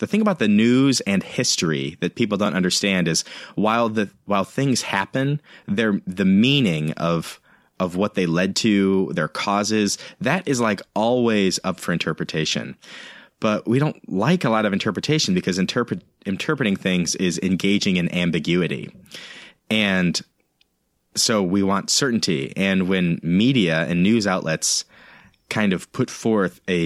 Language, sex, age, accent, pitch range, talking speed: English, male, 30-49, American, 85-110 Hz, 150 wpm